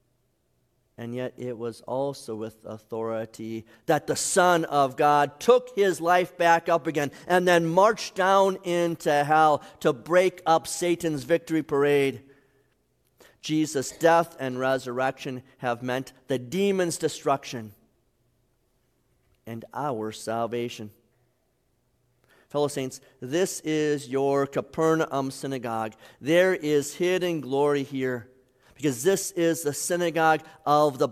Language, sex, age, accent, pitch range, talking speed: English, male, 50-69, American, 125-160 Hz, 120 wpm